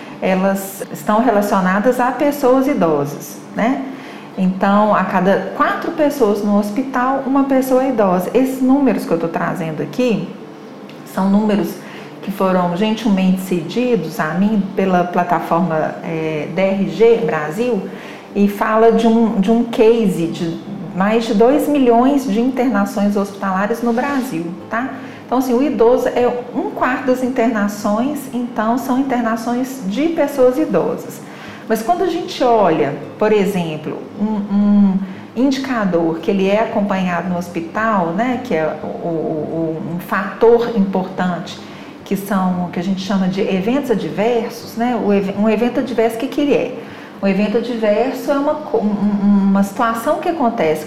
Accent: Brazilian